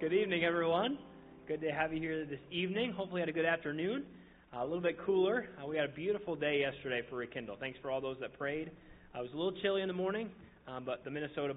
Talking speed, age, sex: 250 wpm, 20-39, male